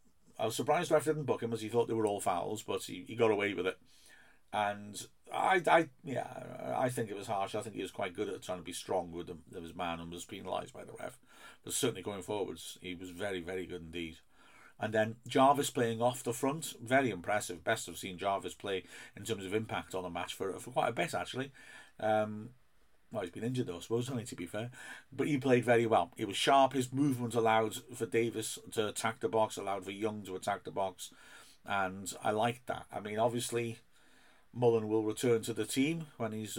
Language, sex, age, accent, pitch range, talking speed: English, male, 50-69, British, 100-125 Hz, 225 wpm